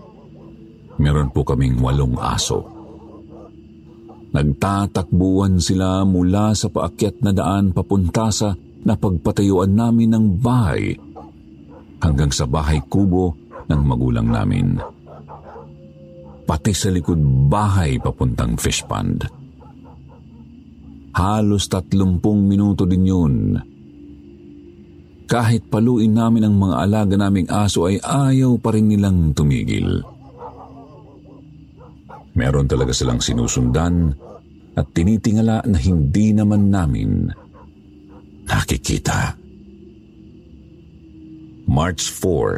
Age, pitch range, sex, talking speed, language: 50-69, 75-105 Hz, male, 85 wpm, Filipino